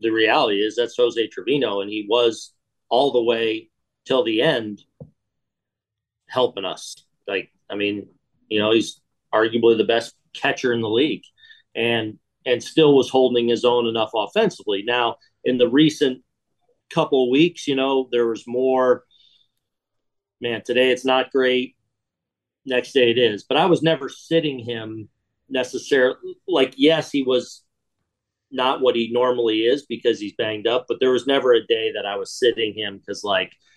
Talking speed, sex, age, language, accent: 165 wpm, male, 40-59, English, American